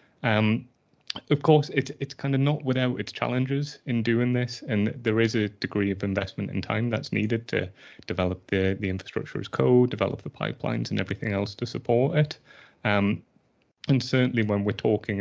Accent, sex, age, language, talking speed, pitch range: British, male, 30-49, English, 190 wpm, 95-120 Hz